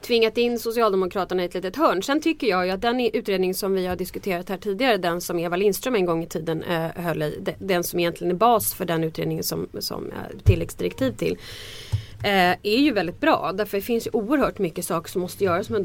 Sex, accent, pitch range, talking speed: female, Swedish, 170-215 Hz, 220 wpm